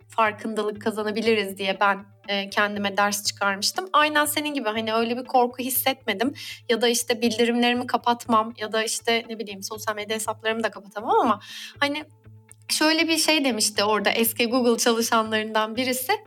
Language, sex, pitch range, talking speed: Turkish, female, 215-270 Hz, 155 wpm